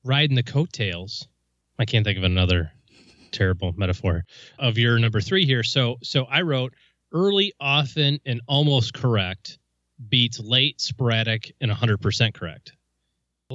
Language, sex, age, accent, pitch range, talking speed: English, male, 30-49, American, 100-130 Hz, 135 wpm